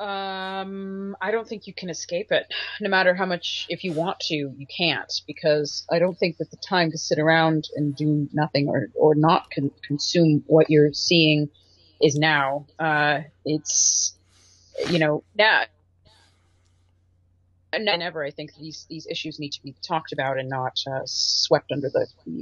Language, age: English, 30-49